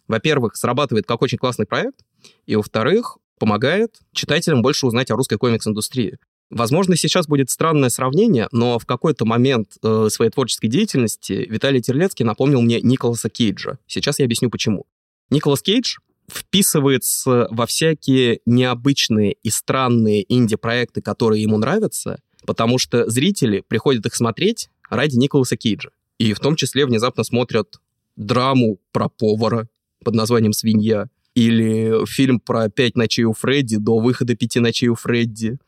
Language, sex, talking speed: Russian, male, 140 wpm